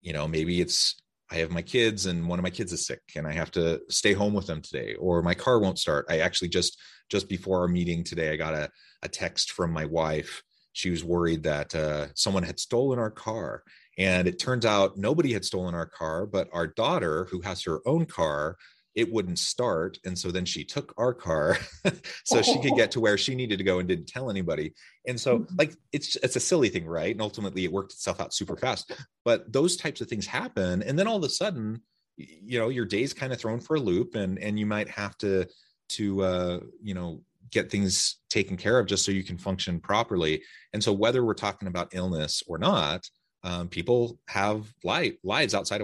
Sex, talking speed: male, 225 wpm